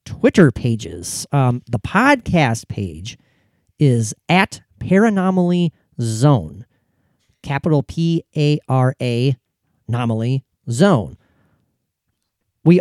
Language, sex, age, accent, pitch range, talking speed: English, male, 40-59, American, 120-165 Hz, 85 wpm